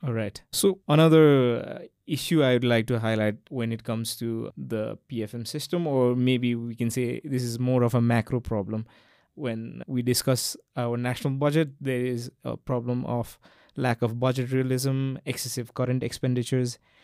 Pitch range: 120-135 Hz